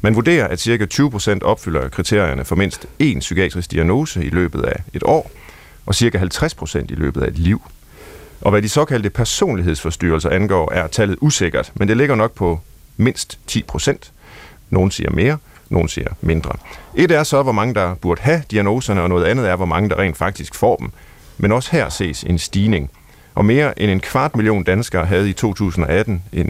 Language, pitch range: Danish, 90-120 Hz